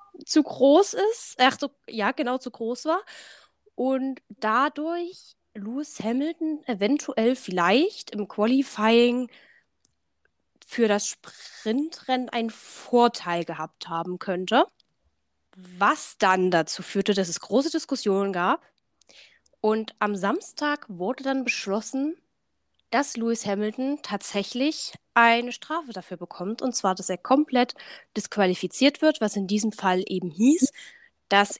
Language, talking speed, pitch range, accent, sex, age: German, 120 wpm, 195-265 Hz, German, female, 10-29